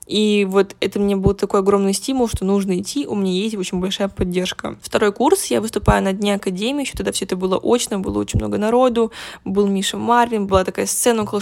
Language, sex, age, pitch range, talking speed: Russian, female, 10-29, 190-230 Hz, 215 wpm